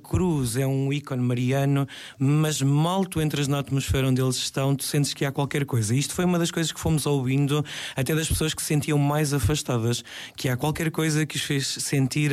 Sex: male